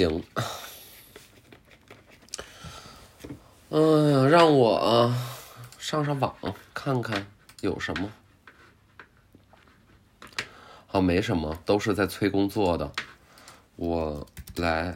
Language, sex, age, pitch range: Chinese, male, 20-39, 85-110 Hz